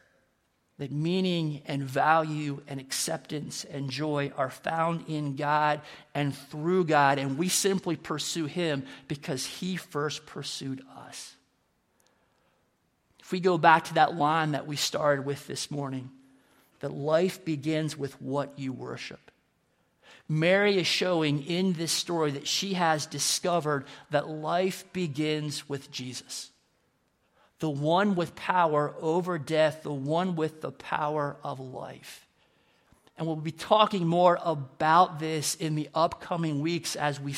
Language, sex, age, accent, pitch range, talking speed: English, male, 50-69, American, 145-170 Hz, 140 wpm